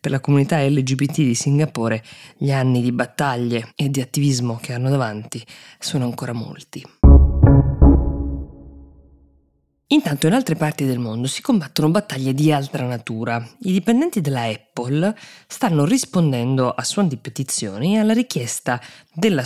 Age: 20-39